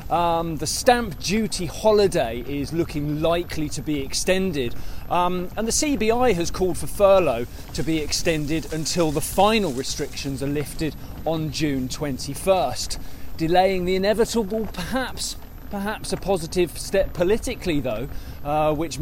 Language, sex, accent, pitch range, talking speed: English, male, British, 135-185 Hz, 135 wpm